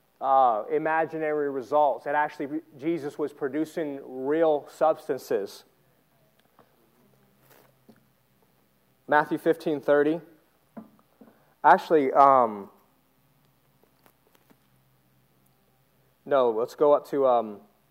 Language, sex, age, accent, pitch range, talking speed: English, male, 30-49, American, 135-160 Hz, 70 wpm